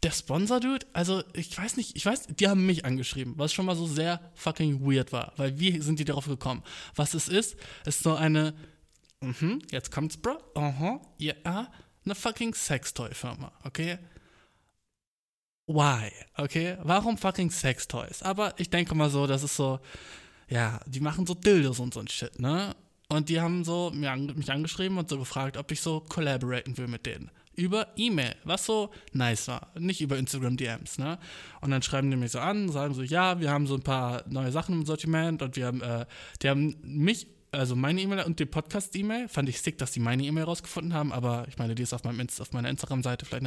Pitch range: 135-175 Hz